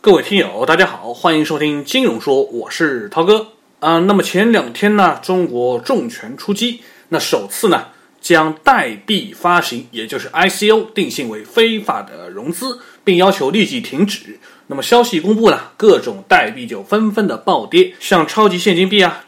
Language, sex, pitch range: Chinese, male, 170-235 Hz